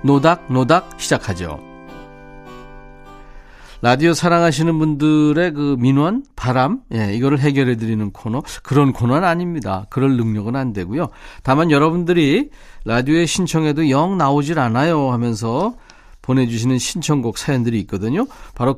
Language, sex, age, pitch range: Korean, male, 40-59, 115-160 Hz